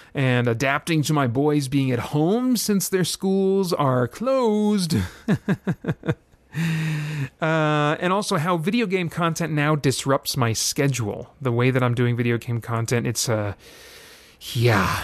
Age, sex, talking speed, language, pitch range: 30-49, male, 140 wpm, English, 125-160 Hz